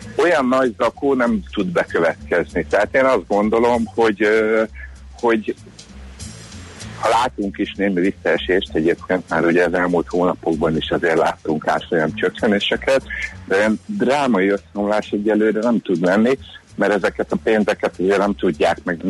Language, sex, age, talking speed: Hungarian, male, 60-79, 140 wpm